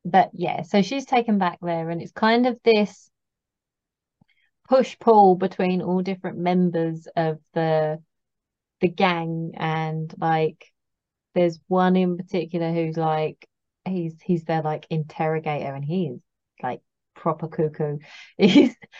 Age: 20-39